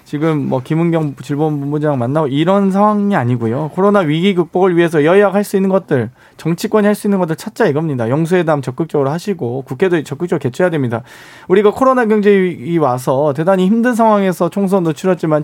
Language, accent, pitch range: Korean, native, 140-195 Hz